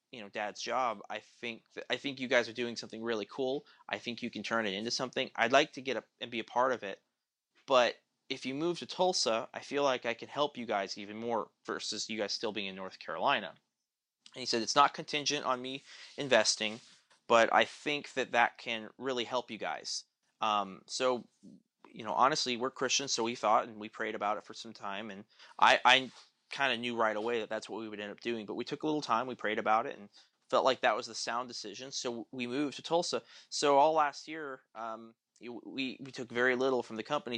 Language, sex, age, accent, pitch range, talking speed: English, male, 30-49, American, 110-135 Hz, 235 wpm